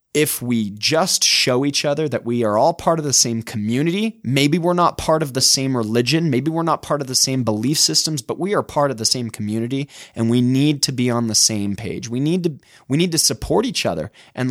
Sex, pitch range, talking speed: male, 115-155 Hz, 245 wpm